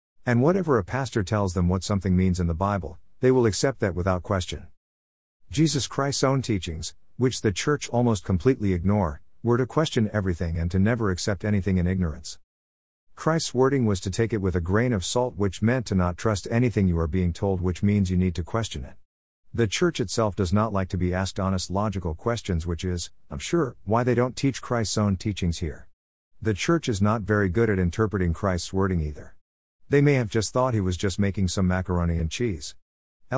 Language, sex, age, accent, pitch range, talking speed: English, male, 50-69, American, 90-115 Hz, 205 wpm